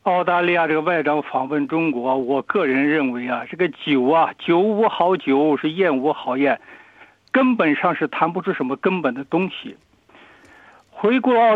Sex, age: male, 60-79